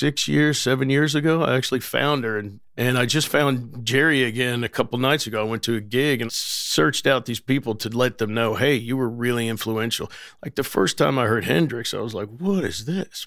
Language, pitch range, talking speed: English, 115-145 Hz, 235 wpm